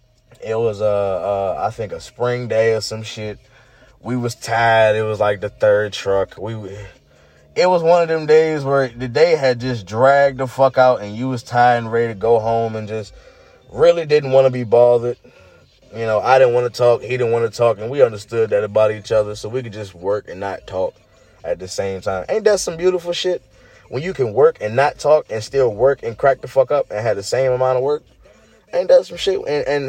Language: English